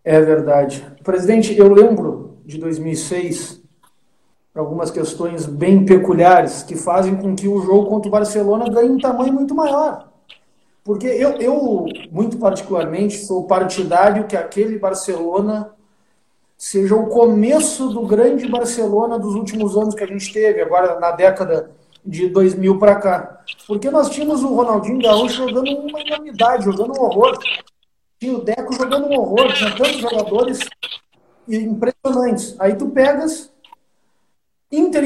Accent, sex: Brazilian, male